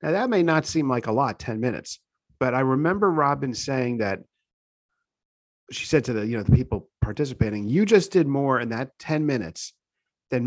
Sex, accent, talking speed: male, American, 195 wpm